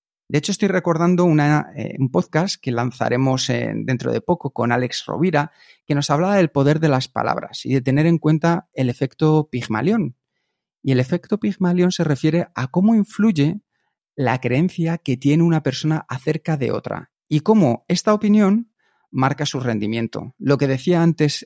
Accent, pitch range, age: Spanish, 130-170 Hz, 30-49